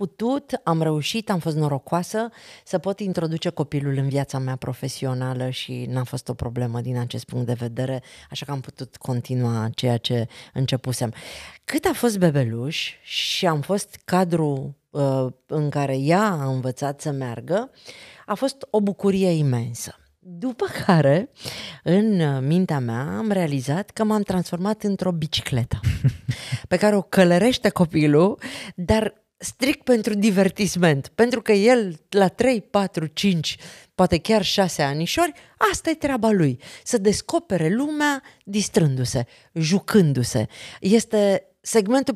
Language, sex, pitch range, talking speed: Romanian, female, 130-205 Hz, 135 wpm